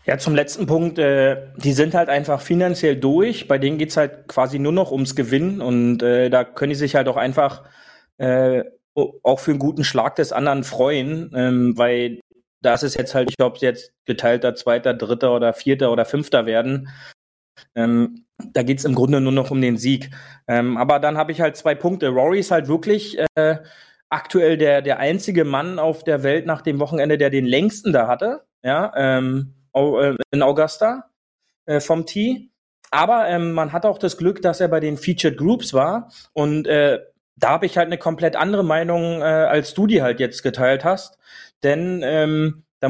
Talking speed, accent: 190 wpm, German